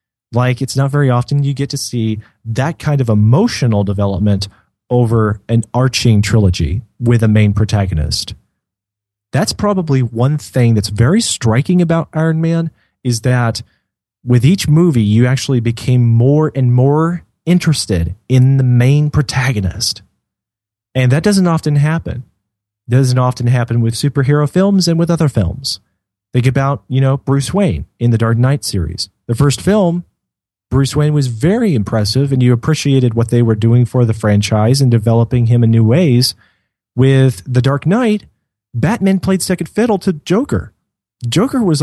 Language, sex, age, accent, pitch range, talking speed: English, male, 30-49, American, 115-150 Hz, 160 wpm